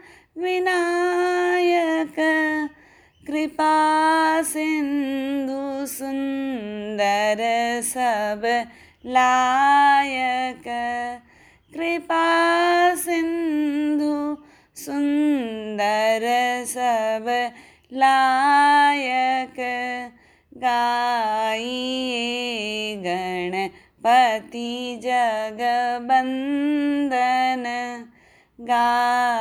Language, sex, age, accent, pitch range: Hindi, female, 20-39, native, 245-315 Hz